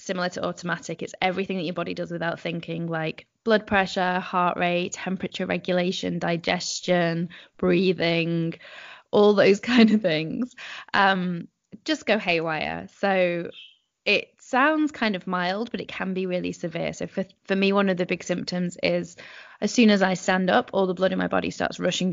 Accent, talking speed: British, 175 wpm